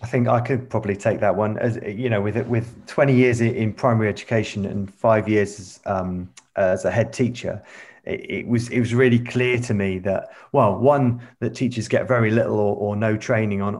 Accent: British